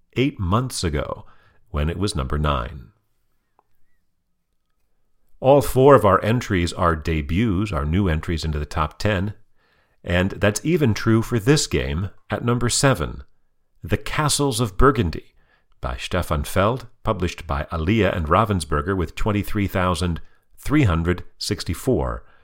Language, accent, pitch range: English, American, 80-110 Hz